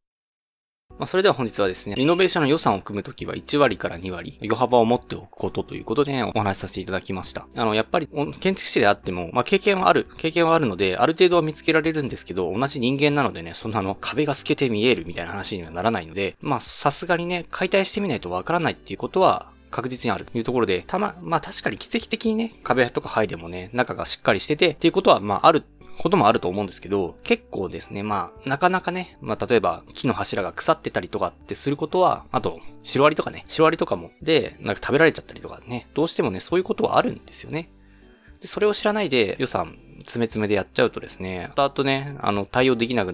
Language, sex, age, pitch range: Japanese, male, 20-39, 100-170 Hz